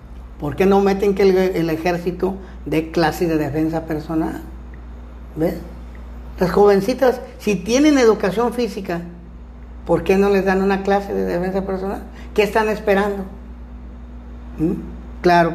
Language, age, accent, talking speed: Spanish, 50-69, American, 130 wpm